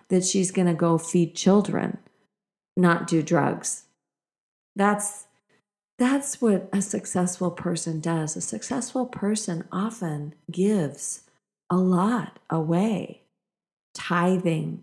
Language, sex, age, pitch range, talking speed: English, female, 40-59, 160-200 Hz, 105 wpm